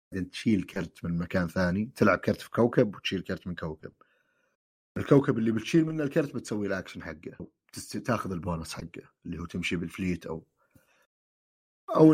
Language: Arabic